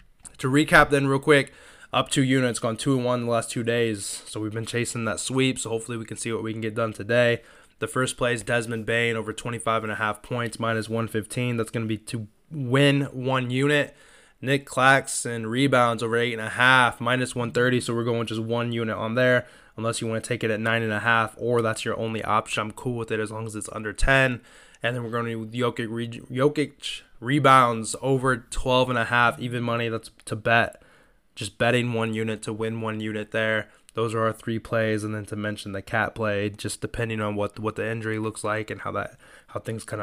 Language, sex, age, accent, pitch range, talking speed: English, male, 20-39, American, 110-130 Hz, 215 wpm